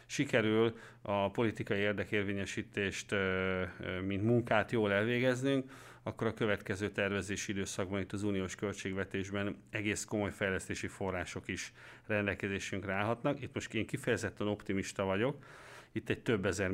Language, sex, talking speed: Hungarian, male, 120 wpm